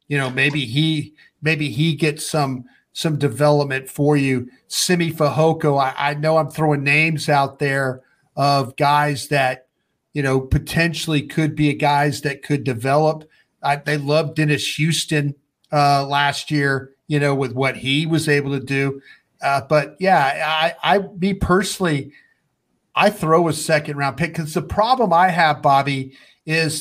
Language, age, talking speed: English, 40-59, 160 wpm